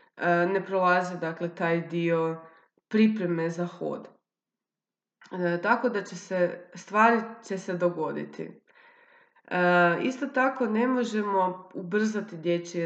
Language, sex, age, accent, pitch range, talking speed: Croatian, female, 20-39, native, 175-215 Hz, 110 wpm